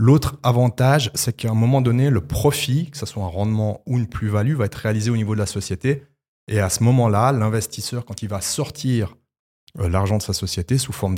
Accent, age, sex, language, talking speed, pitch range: French, 30-49, male, French, 215 wpm, 100-120 Hz